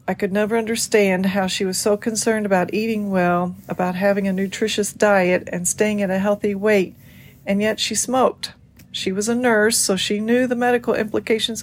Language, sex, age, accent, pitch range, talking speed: English, female, 40-59, American, 185-215 Hz, 190 wpm